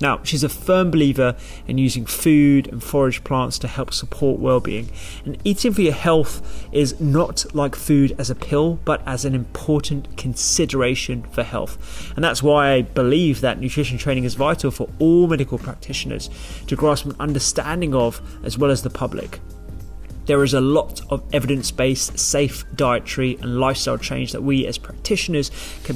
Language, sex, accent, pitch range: English, male, British, 120-140 Hz